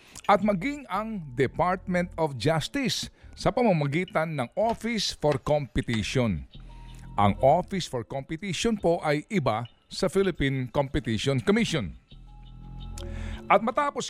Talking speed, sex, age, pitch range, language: 105 wpm, male, 50-69, 120-185 Hz, Filipino